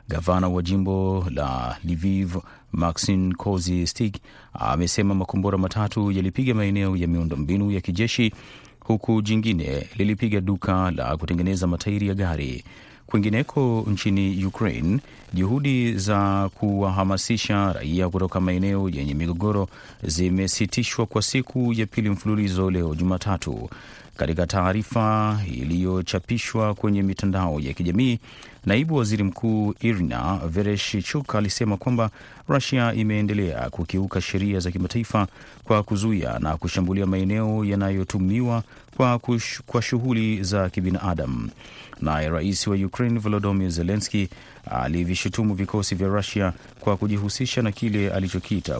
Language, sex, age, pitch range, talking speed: Swahili, male, 30-49, 90-110 Hz, 110 wpm